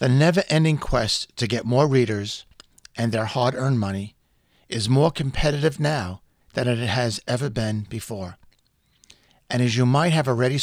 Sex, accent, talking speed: male, American, 150 wpm